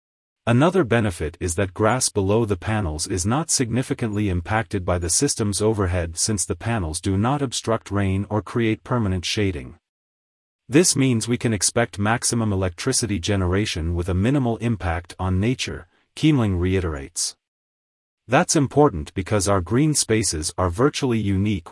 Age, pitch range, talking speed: 30-49, 90-120 Hz, 145 wpm